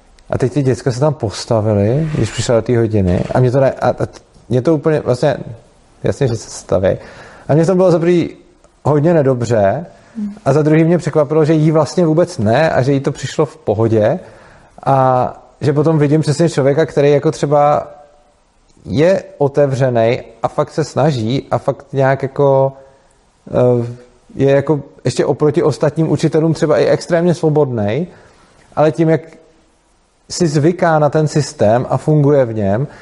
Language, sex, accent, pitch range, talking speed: Czech, male, native, 130-155 Hz, 165 wpm